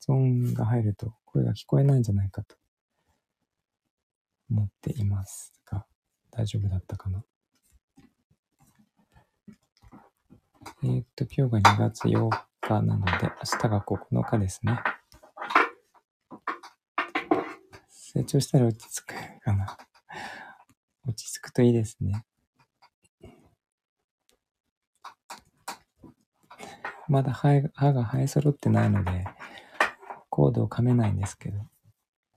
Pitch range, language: 95-125 Hz, Japanese